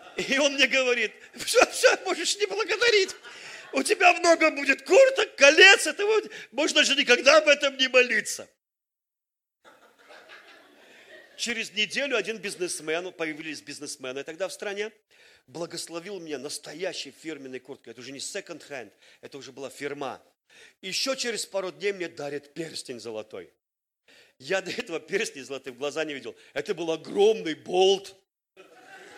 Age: 40-59